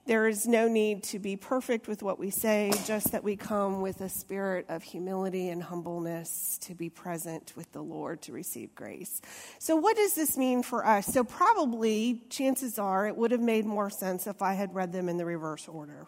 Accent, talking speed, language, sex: American, 215 wpm, English, female